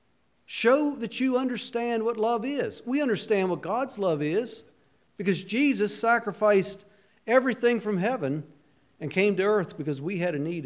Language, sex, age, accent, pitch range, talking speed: English, male, 50-69, American, 140-220 Hz, 160 wpm